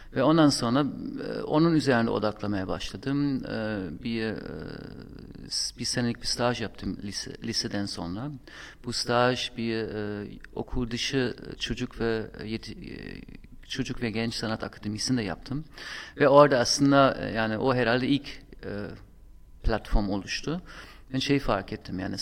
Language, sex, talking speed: Turkish, male, 115 wpm